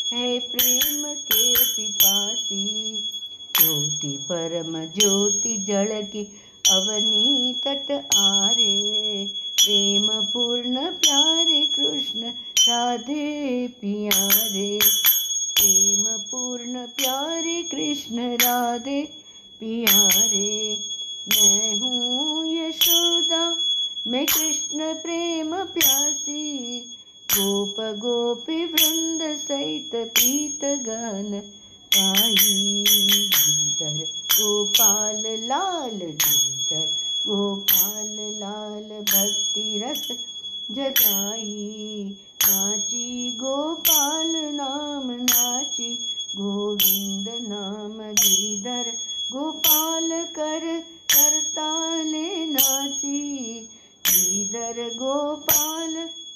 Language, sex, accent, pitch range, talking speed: Hindi, female, native, 205-285 Hz, 60 wpm